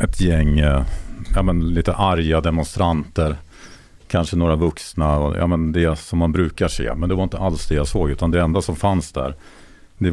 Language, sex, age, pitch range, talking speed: Swedish, male, 50-69, 70-85 Hz, 195 wpm